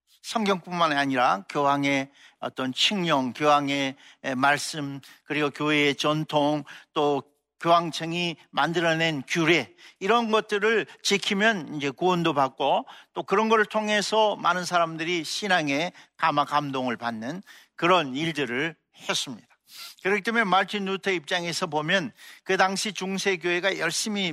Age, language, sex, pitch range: 60-79, Korean, male, 155-205 Hz